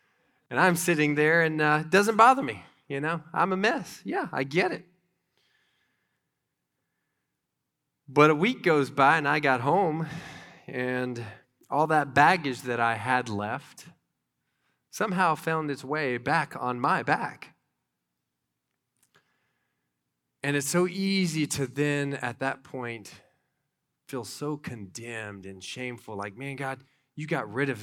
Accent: American